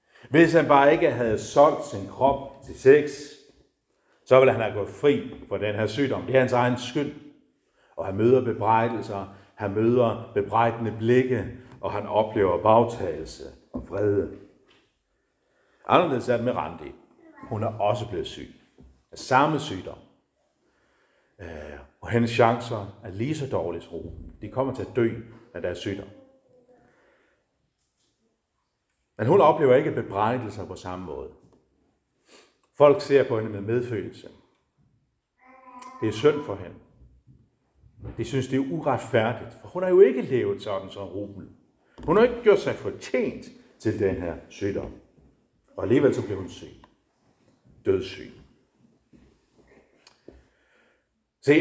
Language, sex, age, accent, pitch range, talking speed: Danish, male, 60-79, native, 100-140 Hz, 140 wpm